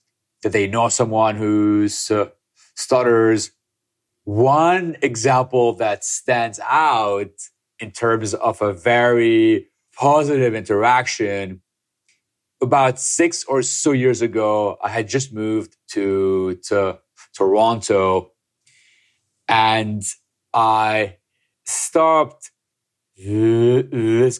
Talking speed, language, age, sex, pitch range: 85 wpm, English, 30-49, male, 105-135 Hz